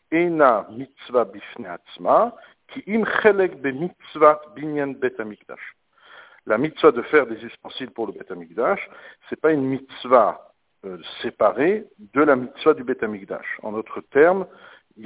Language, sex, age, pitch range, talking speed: French, male, 60-79, 120-190 Hz, 100 wpm